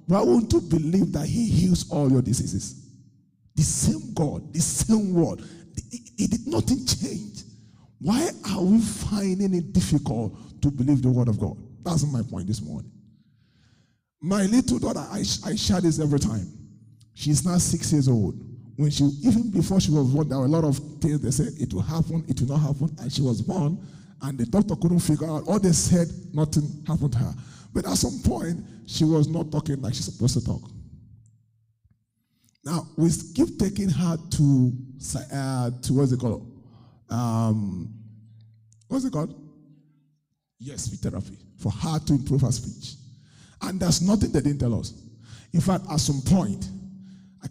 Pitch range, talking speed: 125-170 Hz, 180 wpm